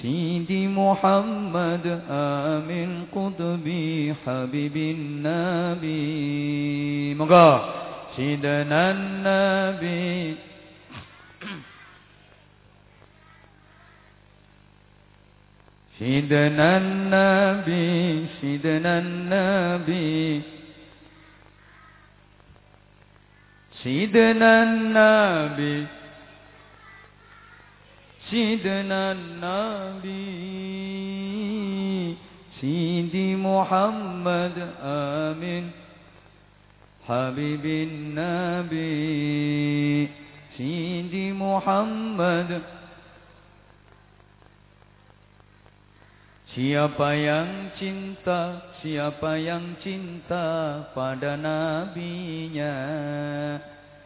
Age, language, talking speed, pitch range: 50-69, English, 30 wpm, 145-185 Hz